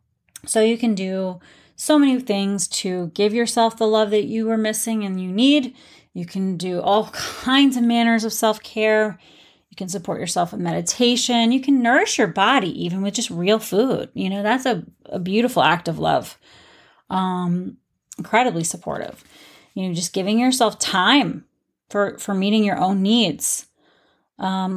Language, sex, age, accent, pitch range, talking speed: English, female, 30-49, American, 185-230 Hz, 165 wpm